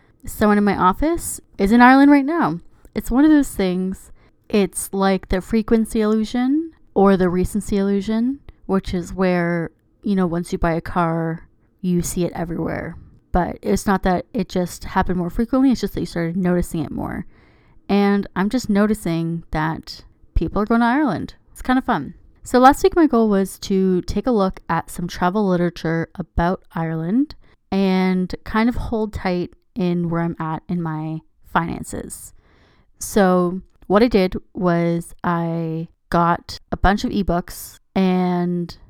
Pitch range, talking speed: 175-220 Hz, 165 wpm